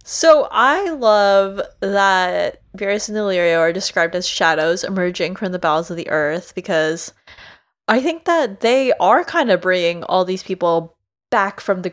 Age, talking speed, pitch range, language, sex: 20-39, 165 wpm, 165-200 Hz, English, female